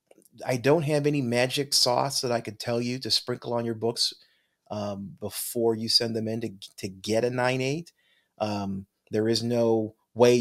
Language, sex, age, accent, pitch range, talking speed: English, male, 30-49, American, 105-140 Hz, 185 wpm